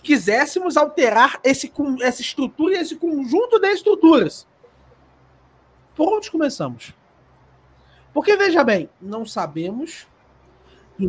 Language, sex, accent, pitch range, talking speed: Portuguese, male, Brazilian, 220-330 Hz, 95 wpm